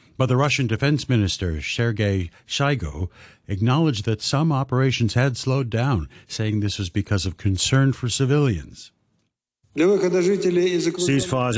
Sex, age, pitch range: male, 60-79, 105-125 Hz